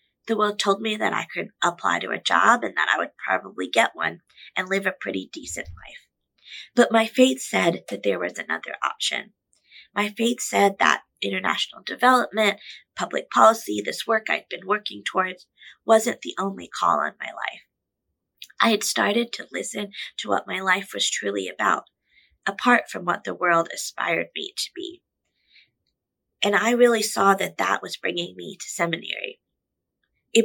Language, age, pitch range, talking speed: English, 20-39, 185-235 Hz, 170 wpm